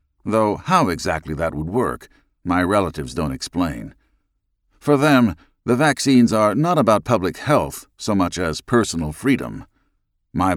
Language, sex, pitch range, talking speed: English, male, 85-110 Hz, 140 wpm